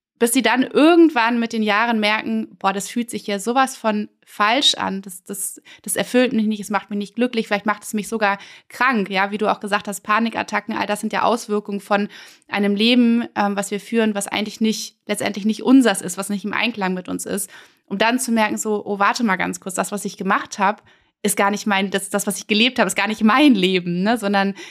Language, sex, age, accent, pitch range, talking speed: German, female, 20-39, German, 200-235 Hz, 240 wpm